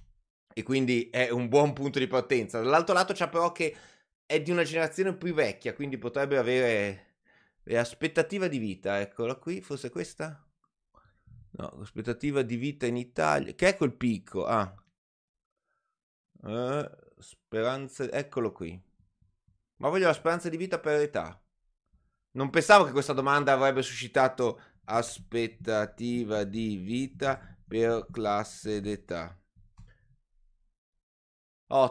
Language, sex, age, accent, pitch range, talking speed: Italian, male, 30-49, native, 100-140 Hz, 125 wpm